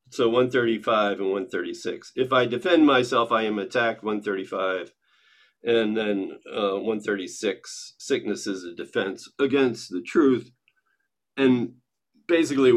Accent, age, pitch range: American, 40-59, 105-140 Hz